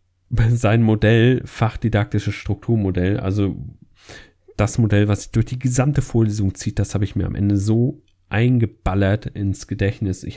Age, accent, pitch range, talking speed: 40-59, German, 95-120 Hz, 145 wpm